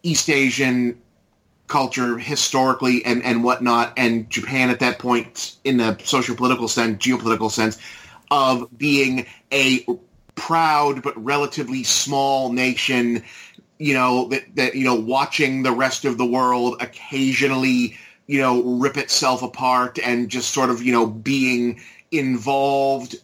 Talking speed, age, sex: 135 wpm, 30-49, male